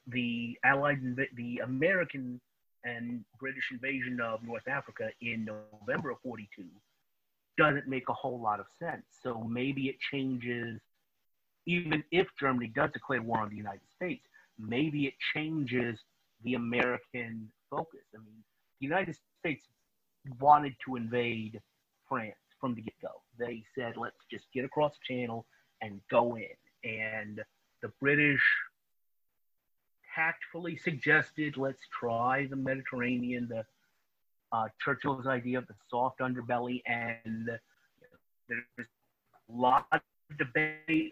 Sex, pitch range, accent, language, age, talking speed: male, 115-140 Hz, American, English, 30-49, 135 wpm